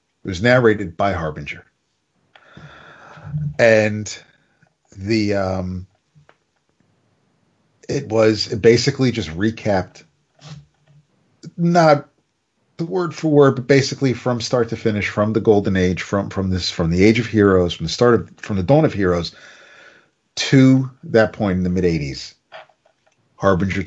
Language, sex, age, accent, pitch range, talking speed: English, male, 40-59, American, 85-125 Hz, 135 wpm